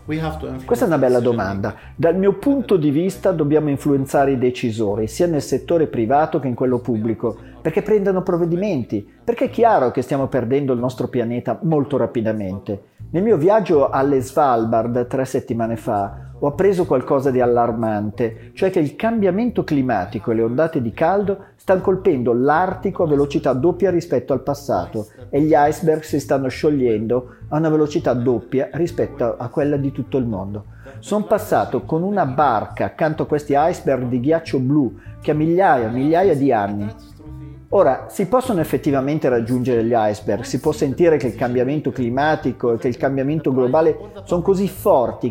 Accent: native